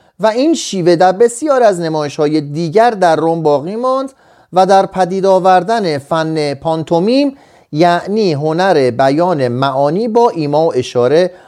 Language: Persian